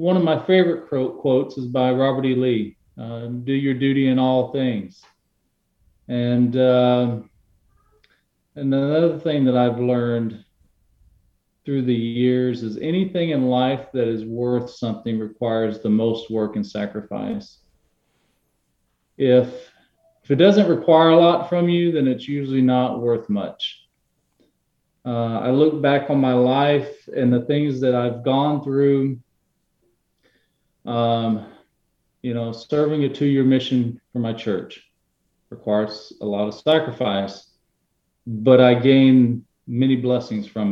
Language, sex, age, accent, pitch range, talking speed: English, male, 40-59, American, 115-145 Hz, 135 wpm